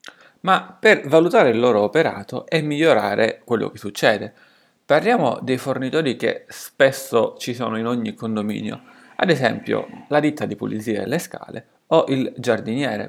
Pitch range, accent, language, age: 115-160 Hz, native, Italian, 30-49